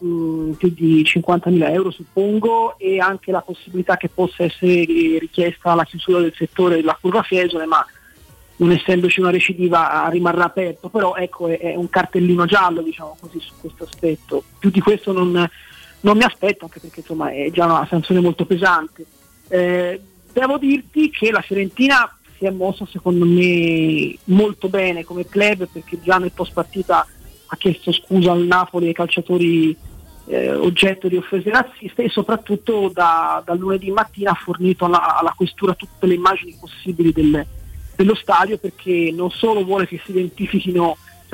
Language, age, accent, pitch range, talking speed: Italian, 30-49, native, 170-195 Hz, 165 wpm